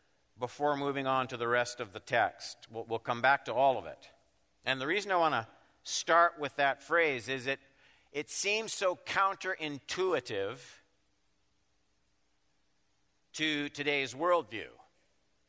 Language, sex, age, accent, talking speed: English, male, 50-69, American, 140 wpm